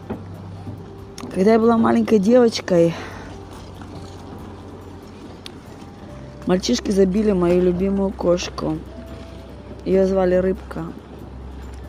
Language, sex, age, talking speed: Russian, female, 20-39, 65 wpm